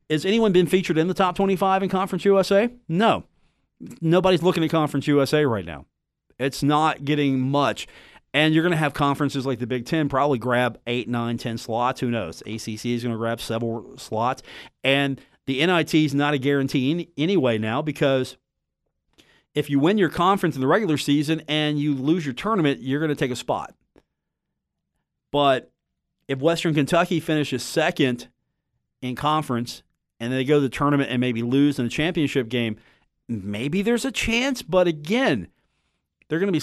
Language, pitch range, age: English, 115-160 Hz, 40-59